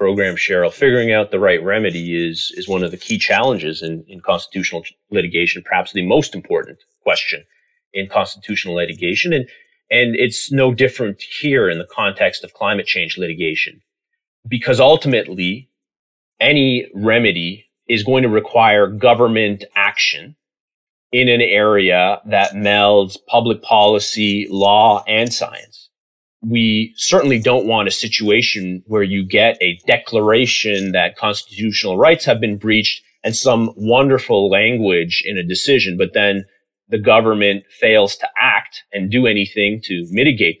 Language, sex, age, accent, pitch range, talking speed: English, male, 30-49, American, 95-130 Hz, 140 wpm